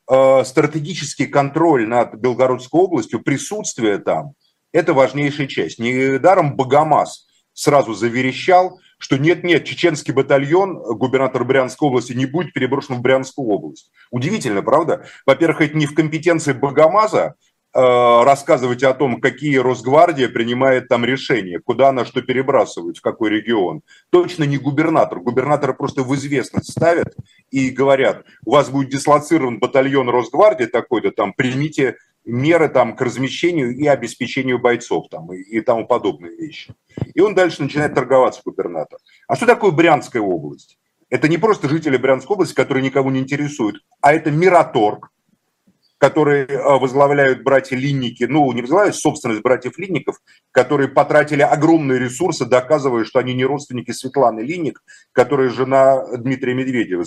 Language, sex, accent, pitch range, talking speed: Russian, male, native, 125-155 Hz, 140 wpm